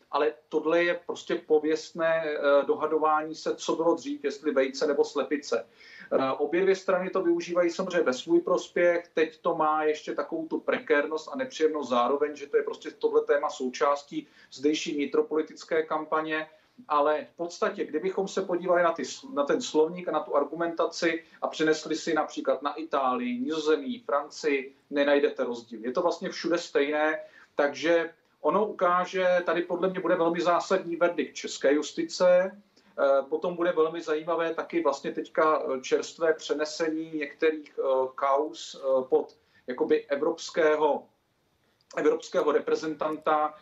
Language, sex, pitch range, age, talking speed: Czech, male, 150-175 Hz, 40-59, 140 wpm